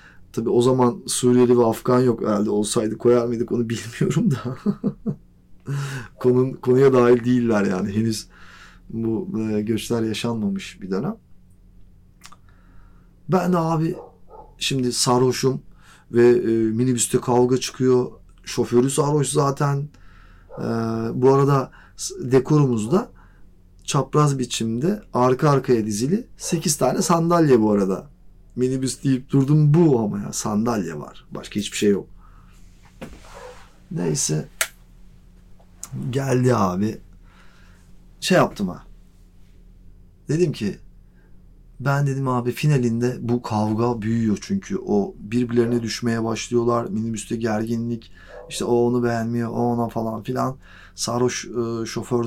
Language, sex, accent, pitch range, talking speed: Turkish, male, native, 100-130 Hz, 105 wpm